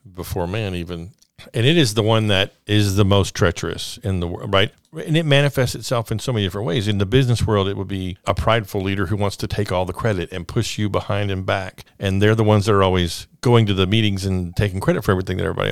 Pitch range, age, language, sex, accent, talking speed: 95-115 Hz, 50-69, English, male, American, 255 wpm